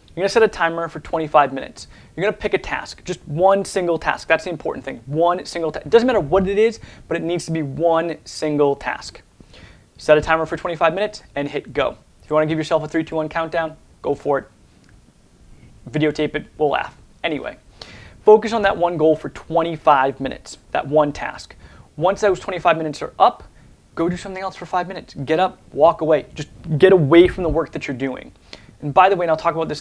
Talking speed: 225 wpm